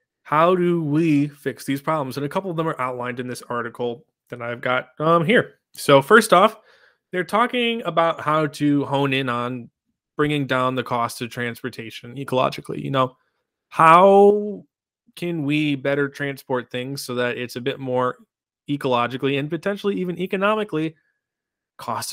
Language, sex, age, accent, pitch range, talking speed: English, male, 30-49, American, 130-175 Hz, 160 wpm